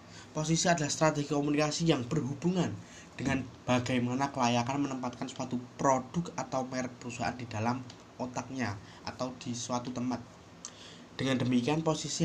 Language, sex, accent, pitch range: Indonesian, male, native, 115-140 Hz